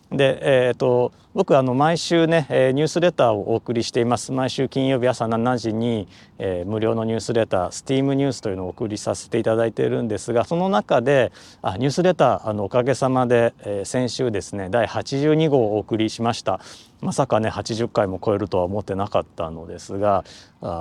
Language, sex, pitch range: Japanese, male, 110-140 Hz